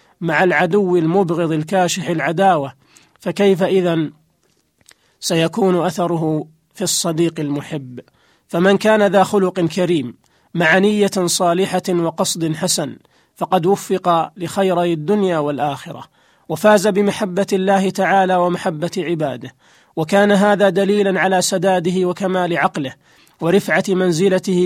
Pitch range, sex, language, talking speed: 170-195 Hz, male, Arabic, 100 wpm